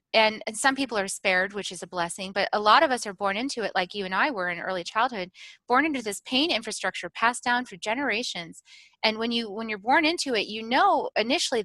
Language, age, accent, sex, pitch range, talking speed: English, 30-49, American, female, 185-250 Hz, 235 wpm